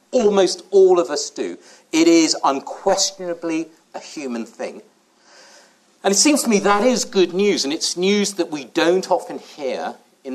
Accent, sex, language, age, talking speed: British, male, English, 50-69, 170 wpm